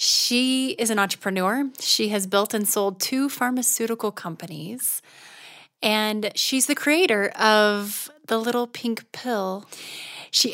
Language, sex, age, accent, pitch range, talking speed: English, female, 30-49, American, 190-240 Hz, 125 wpm